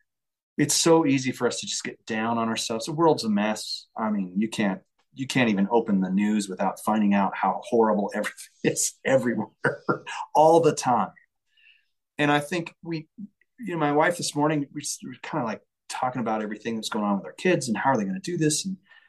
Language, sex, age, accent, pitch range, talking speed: English, male, 30-49, American, 115-185 Hz, 215 wpm